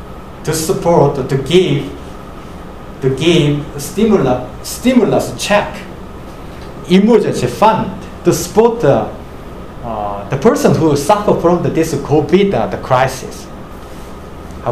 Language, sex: Korean, male